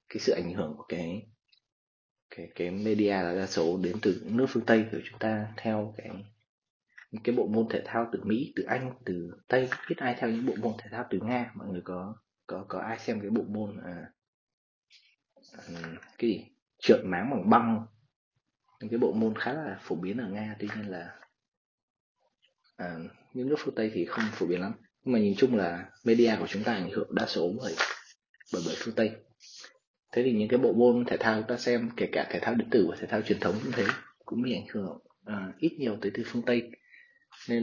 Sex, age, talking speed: male, 20-39, 215 wpm